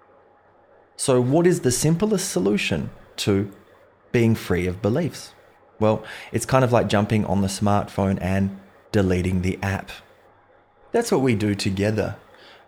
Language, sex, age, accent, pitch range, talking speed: English, male, 20-39, Australian, 95-120 Hz, 135 wpm